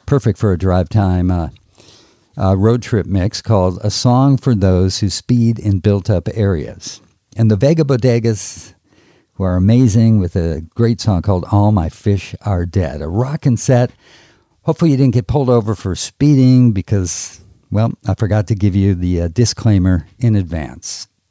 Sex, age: male, 50-69